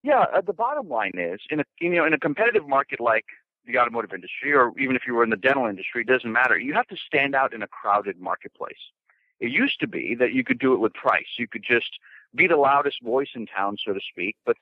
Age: 50-69